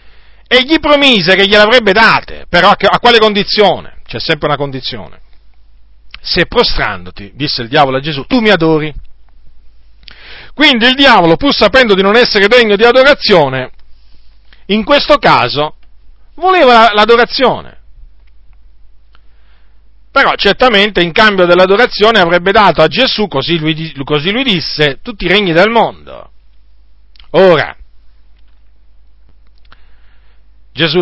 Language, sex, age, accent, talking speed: Italian, male, 40-59, native, 120 wpm